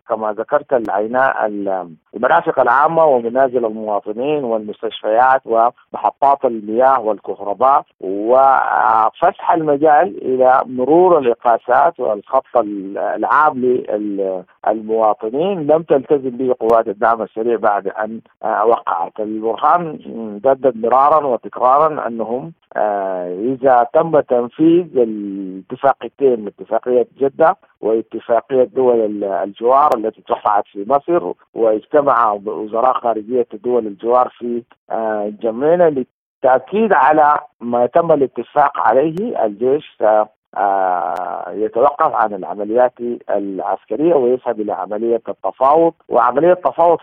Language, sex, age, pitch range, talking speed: Arabic, male, 50-69, 110-135 Hz, 95 wpm